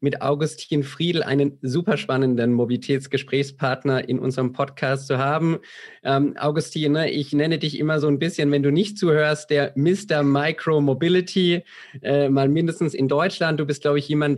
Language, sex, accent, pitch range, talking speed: German, male, German, 135-155 Hz, 165 wpm